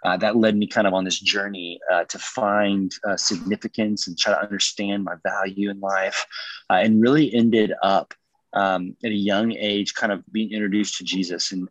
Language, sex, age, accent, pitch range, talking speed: English, male, 30-49, American, 95-110 Hz, 200 wpm